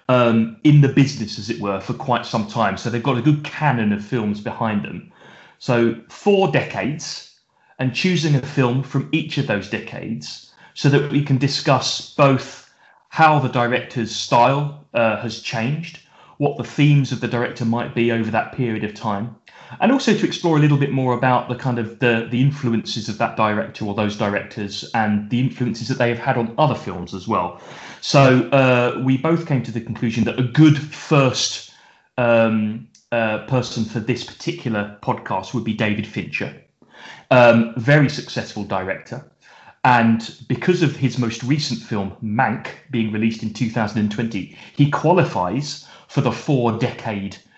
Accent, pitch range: British, 115-140 Hz